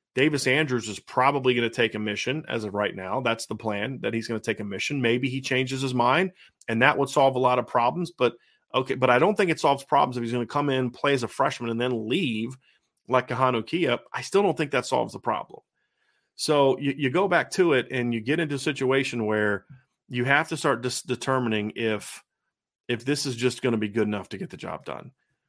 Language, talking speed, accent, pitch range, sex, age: English, 240 wpm, American, 115-140 Hz, male, 40-59